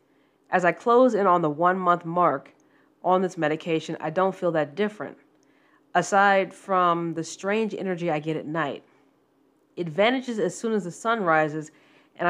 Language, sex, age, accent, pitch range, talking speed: English, female, 40-59, American, 165-205 Hz, 165 wpm